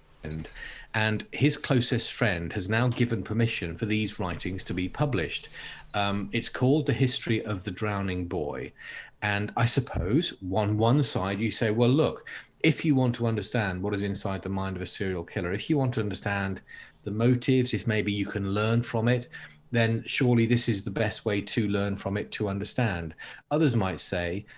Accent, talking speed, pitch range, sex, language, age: British, 190 wpm, 100-125 Hz, male, English, 40-59